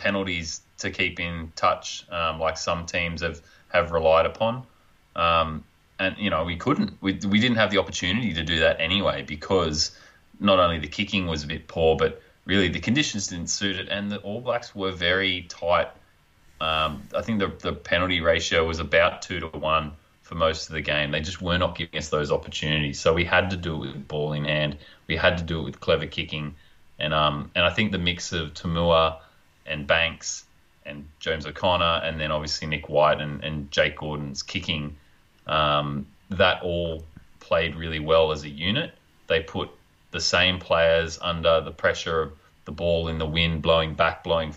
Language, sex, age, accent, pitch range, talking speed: English, male, 30-49, Australian, 80-90 Hz, 195 wpm